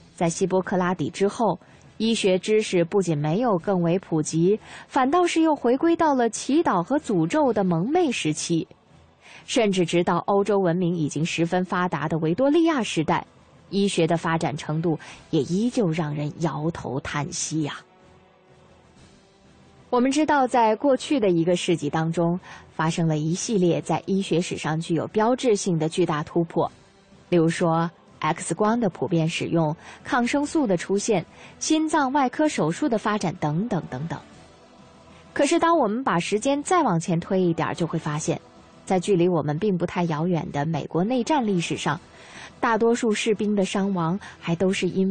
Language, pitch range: Chinese, 165-230 Hz